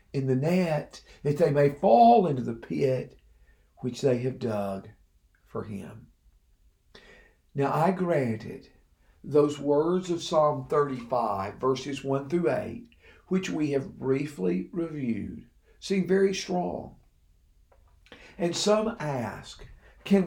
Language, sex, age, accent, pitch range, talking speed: English, male, 50-69, American, 130-175 Hz, 120 wpm